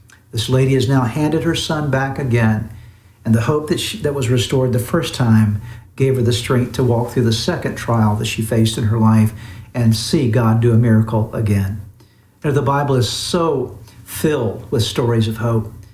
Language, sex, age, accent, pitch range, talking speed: English, male, 60-79, American, 115-165 Hz, 190 wpm